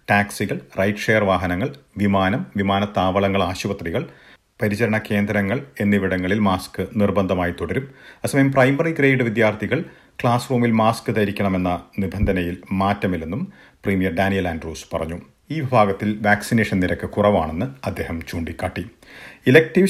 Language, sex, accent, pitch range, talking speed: Malayalam, male, native, 90-110 Hz, 100 wpm